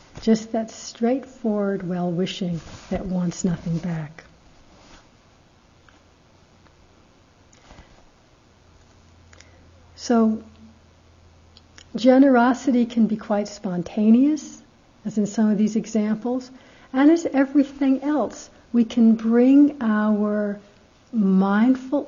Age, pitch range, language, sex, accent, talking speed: 60-79, 180-225 Hz, English, female, American, 80 wpm